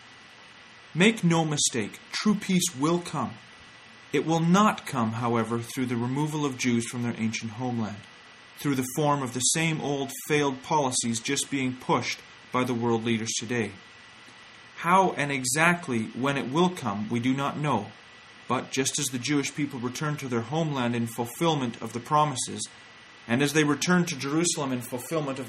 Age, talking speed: 30-49, 170 wpm